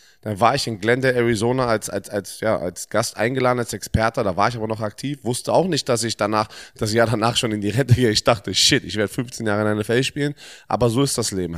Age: 20-39